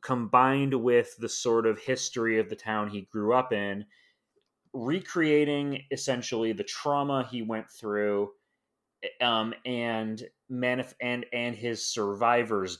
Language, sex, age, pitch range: English, male, 30-49, 100-130 Hz